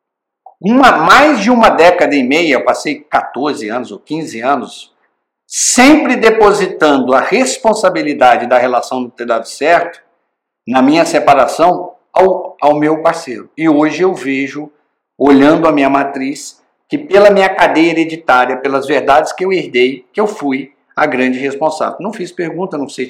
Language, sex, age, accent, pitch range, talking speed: Portuguese, male, 60-79, Brazilian, 135-190 Hz, 155 wpm